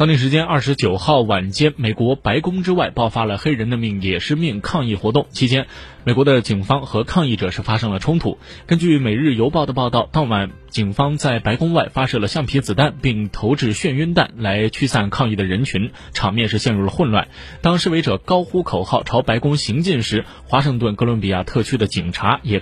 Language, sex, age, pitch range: Chinese, male, 20-39, 100-145 Hz